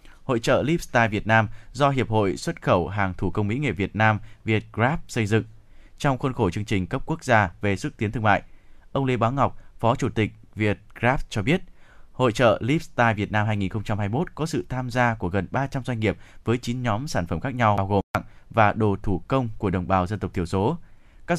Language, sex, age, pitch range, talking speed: Vietnamese, male, 20-39, 100-130 Hz, 220 wpm